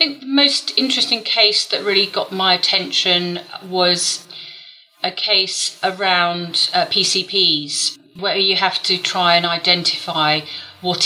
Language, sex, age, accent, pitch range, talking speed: English, female, 40-59, British, 160-185 Hz, 135 wpm